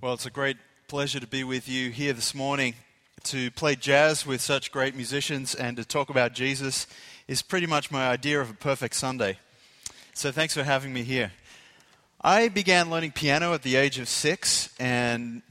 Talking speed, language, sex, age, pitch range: 190 wpm, English, male, 30-49, 120-150 Hz